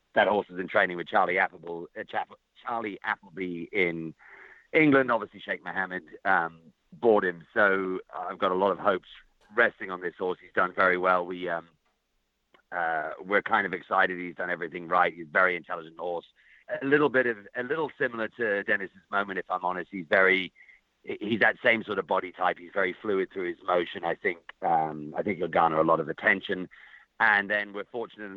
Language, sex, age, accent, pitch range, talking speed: English, male, 40-59, British, 85-110 Hz, 195 wpm